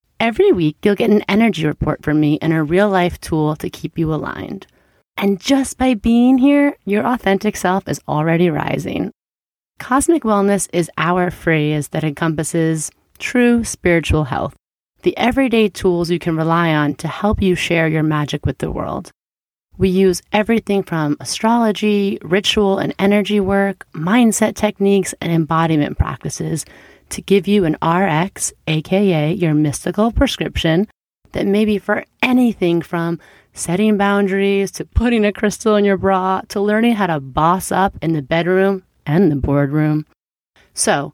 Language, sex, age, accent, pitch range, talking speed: English, female, 30-49, American, 160-210 Hz, 155 wpm